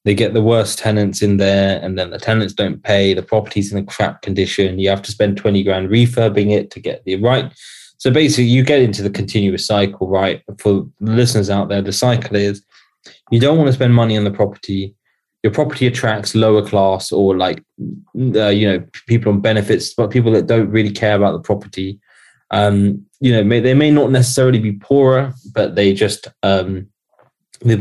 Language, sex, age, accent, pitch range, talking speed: English, male, 20-39, British, 100-115 Hz, 205 wpm